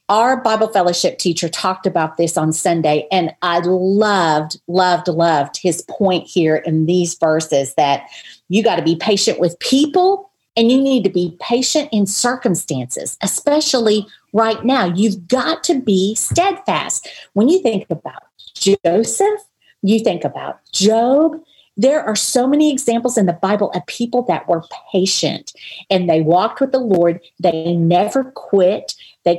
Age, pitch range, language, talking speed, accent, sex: 50-69, 175-240 Hz, English, 155 wpm, American, female